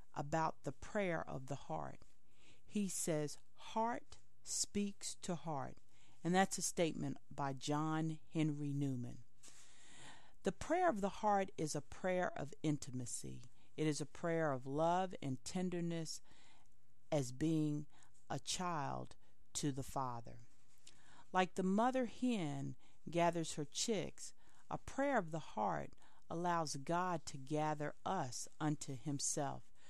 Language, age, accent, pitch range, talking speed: English, 40-59, American, 135-185 Hz, 130 wpm